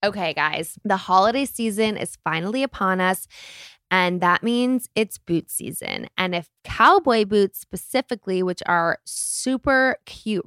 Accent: American